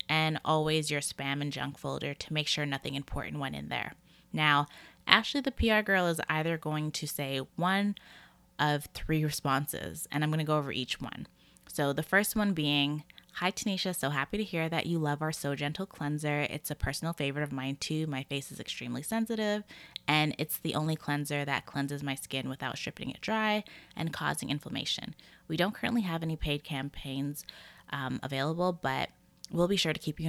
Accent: American